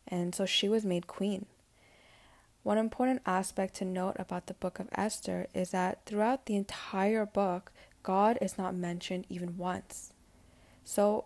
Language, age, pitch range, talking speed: English, 10-29, 180-205 Hz, 155 wpm